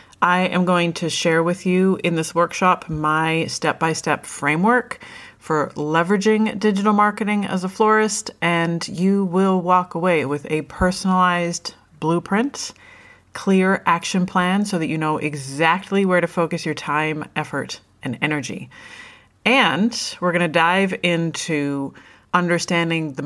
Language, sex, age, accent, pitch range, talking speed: English, female, 30-49, American, 160-195 Hz, 140 wpm